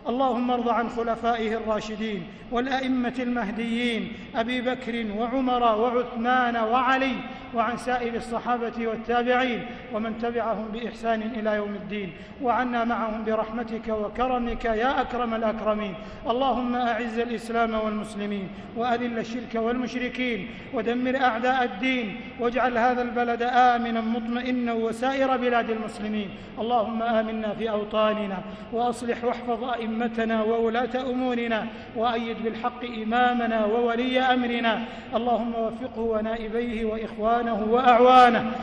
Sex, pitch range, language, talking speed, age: male, 225-245 Hz, Arabic, 100 wpm, 50-69